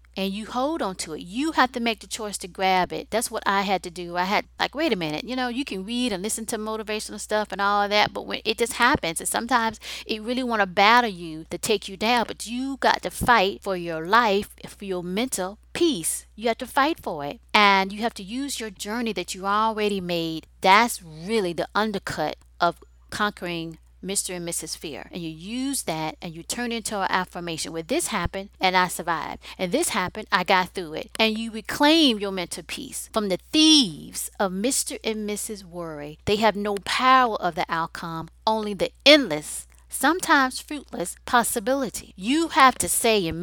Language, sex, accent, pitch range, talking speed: English, female, American, 175-230 Hz, 210 wpm